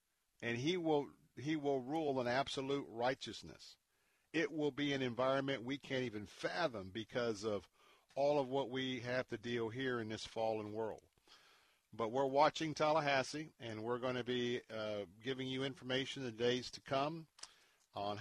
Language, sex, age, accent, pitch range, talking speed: English, male, 50-69, American, 110-130 Hz, 170 wpm